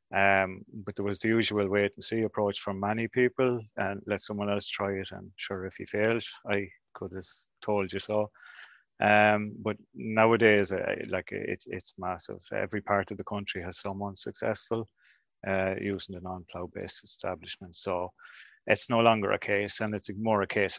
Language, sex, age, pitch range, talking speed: English, male, 30-49, 95-105 Hz, 180 wpm